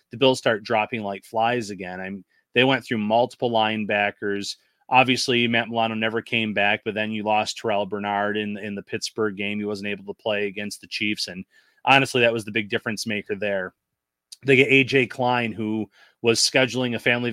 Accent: American